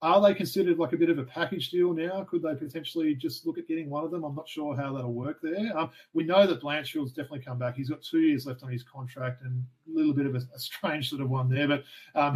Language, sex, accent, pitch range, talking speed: English, male, Australian, 130-165 Hz, 280 wpm